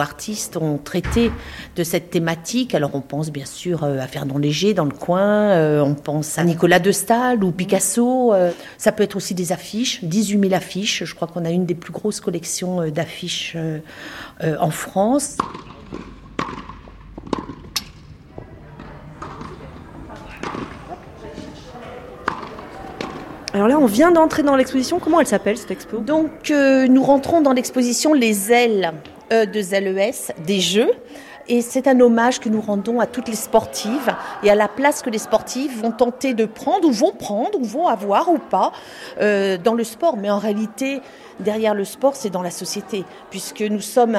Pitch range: 185-250 Hz